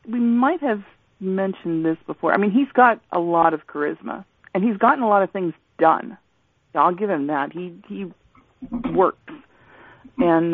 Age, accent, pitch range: 40-59, American, 150-190 Hz